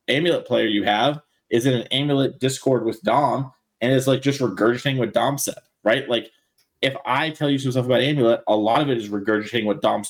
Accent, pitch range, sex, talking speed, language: American, 115-145 Hz, male, 220 wpm, English